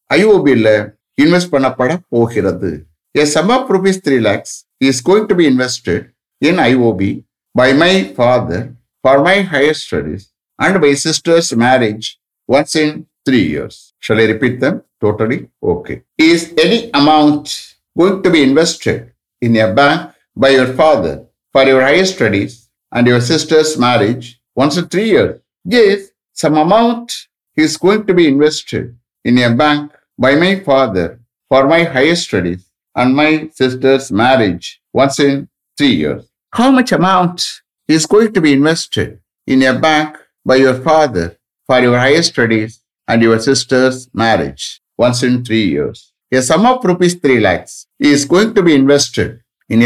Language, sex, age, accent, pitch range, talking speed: English, male, 60-79, Indian, 120-160 Hz, 140 wpm